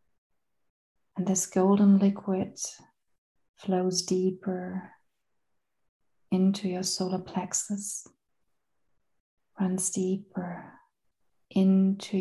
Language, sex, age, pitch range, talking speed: English, female, 30-49, 185-195 Hz, 65 wpm